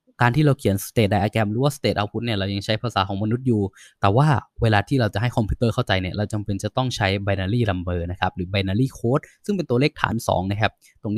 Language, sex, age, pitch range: Thai, male, 20-39, 100-140 Hz